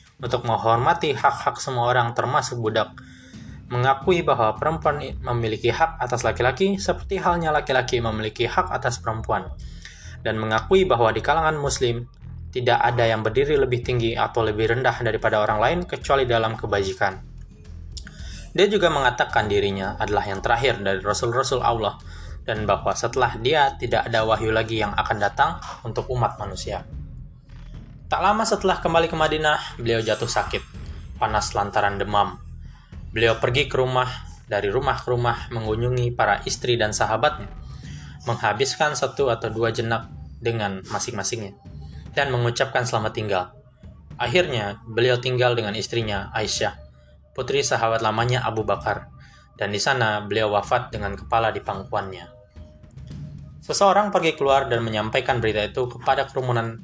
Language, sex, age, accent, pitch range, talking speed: Indonesian, male, 20-39, native, 100-130 Hz, 140 wpm